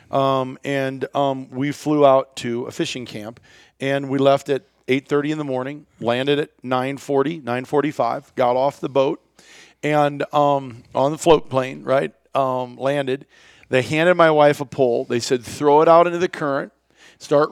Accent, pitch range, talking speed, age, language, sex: American, 140-170 Hz, 180 wpm, 40-59, English, male